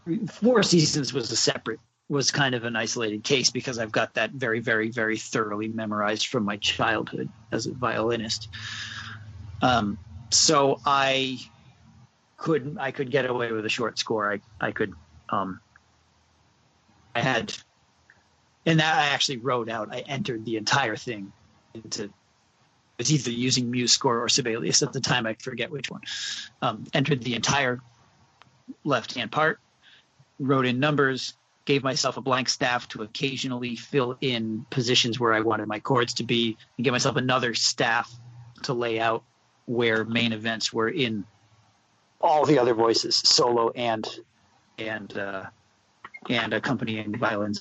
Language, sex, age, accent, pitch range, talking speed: English, male, 40-59, American, 110-140 Hz, 150 wpm